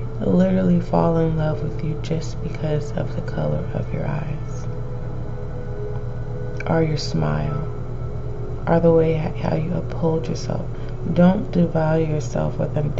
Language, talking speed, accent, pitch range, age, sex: English, 130 wpm, American, 120-155 Hz, 20-39, female